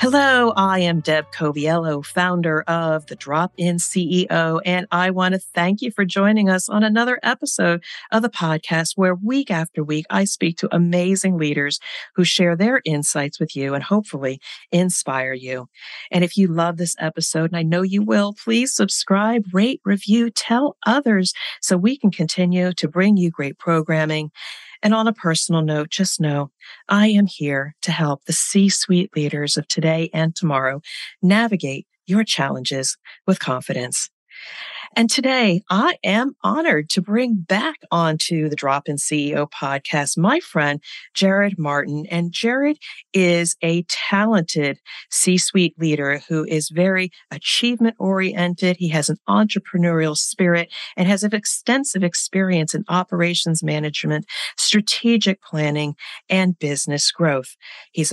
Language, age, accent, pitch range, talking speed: English, 40-59, American, 155-195 Hz, 145 wpm